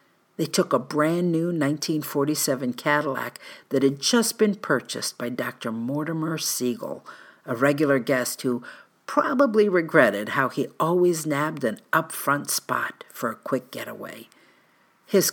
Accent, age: American, 50-69